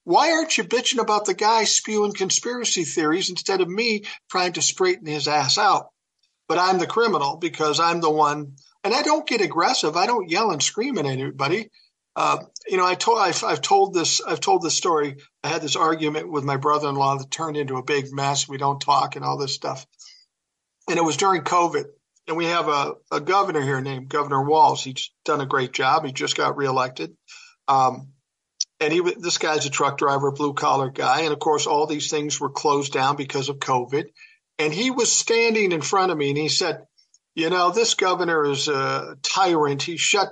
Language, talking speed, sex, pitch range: English, 205 wpm, male, 145-205 Hz